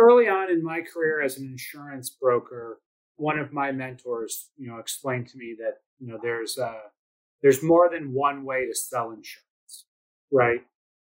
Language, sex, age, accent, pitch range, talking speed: English, male, 30-49, American, 125-160 Hz, 175 wpm